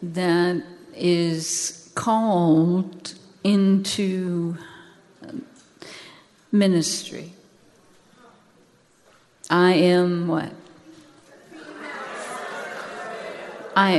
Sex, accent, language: female, American, English